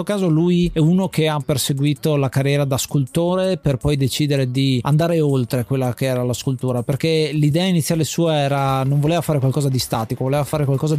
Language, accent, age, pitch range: Italian, native, 30-49, 130-155 Hz